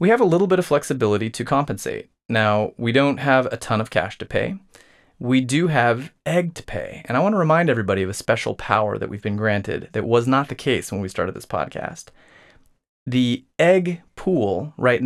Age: 30-49